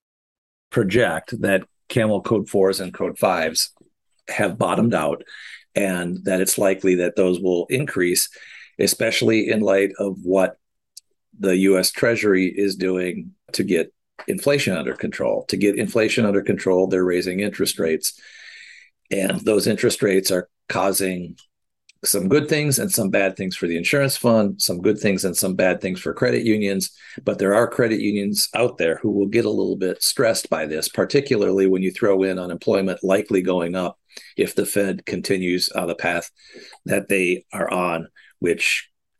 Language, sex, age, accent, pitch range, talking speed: English, male, 50-69, American, 90-105 Hz, 165 wpm